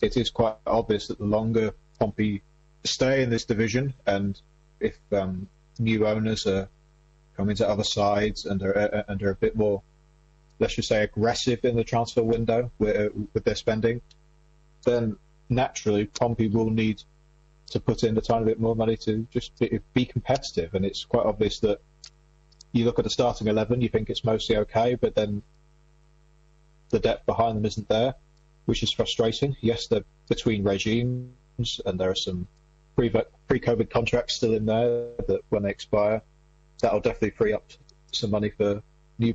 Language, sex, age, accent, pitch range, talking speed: English, male, 20-39, British, 105-155 Hz, 170 wpm